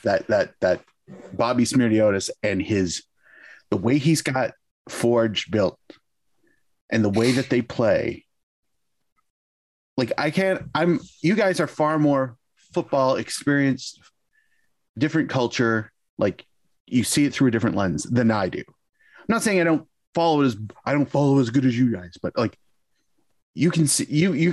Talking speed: 160 wpm